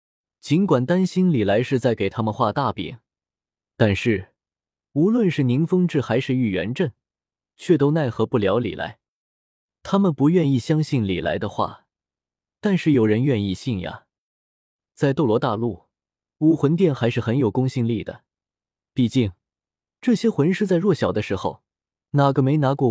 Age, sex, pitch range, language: 20-39, male, 105-155 Hz, Chinese